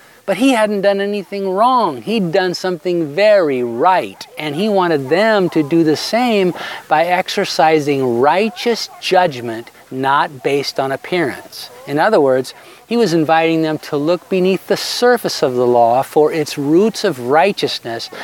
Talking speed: 155 wpm